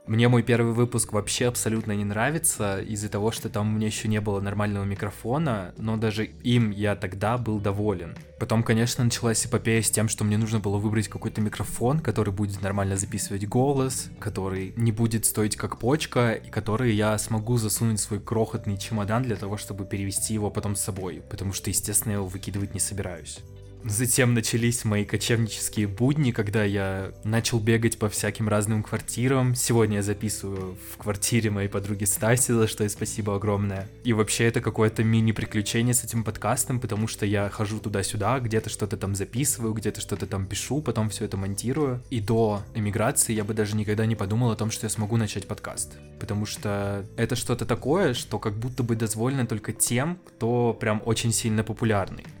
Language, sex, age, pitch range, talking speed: Russian, male, 20-39, 105-115 Hz, 180 wpm